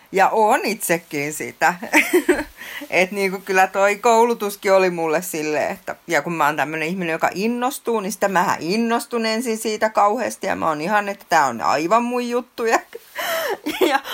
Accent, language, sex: native, Finnish, female